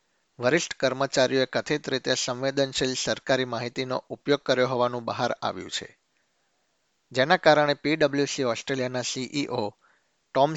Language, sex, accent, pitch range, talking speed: Gujarati, male, native, 125-140 Hz, 95 wpm